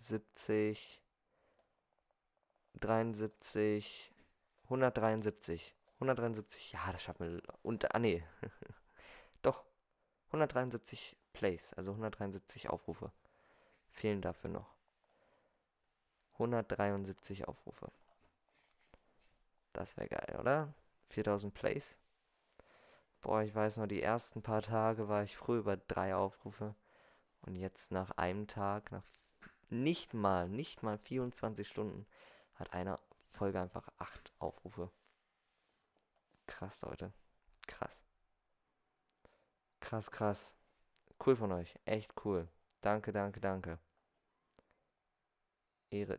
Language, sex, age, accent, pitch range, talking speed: German, male, 20-39, German, 95-115 Hz, 95 wpm